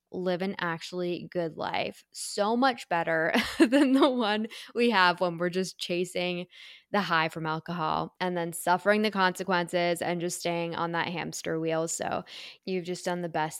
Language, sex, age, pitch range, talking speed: English, female, 10-29, 180-225 Hz, 170 wpm